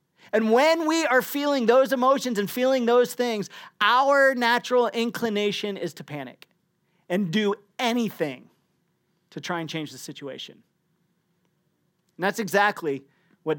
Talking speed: 130 wpm